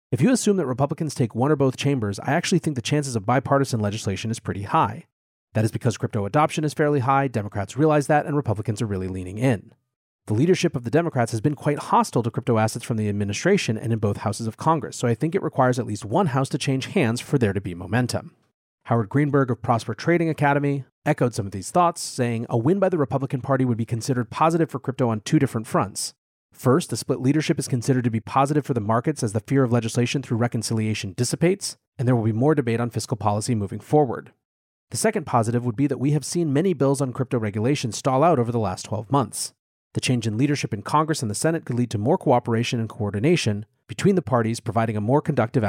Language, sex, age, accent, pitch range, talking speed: English, male, 30-49, American, 110-145 Hz, 235 wpm